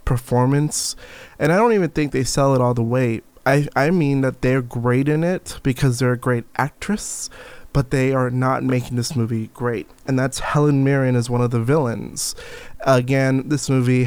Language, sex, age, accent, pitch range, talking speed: English, male, 20-39, American, 125-145 Hz, 190 wpm